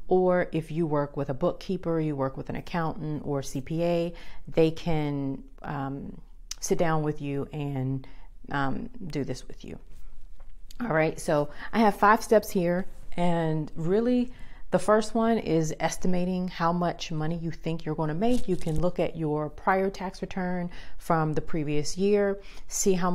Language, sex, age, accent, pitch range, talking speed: English, female, 40-59, American, 145-180 Hz, 165 wpm